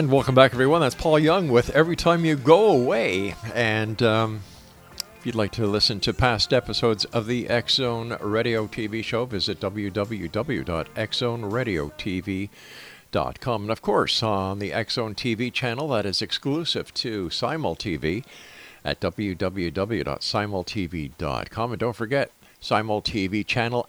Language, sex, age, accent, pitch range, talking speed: English, male, 50-69, American, 100-130 Hz, 125 wpm